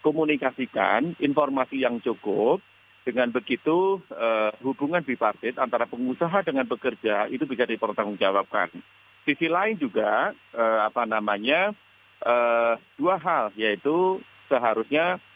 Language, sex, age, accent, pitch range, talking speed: Indonesian, male, 40-59, native, 110-135 Hz, 105 wpm